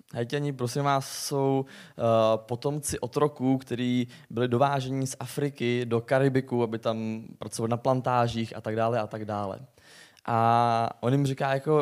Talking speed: 145 wpm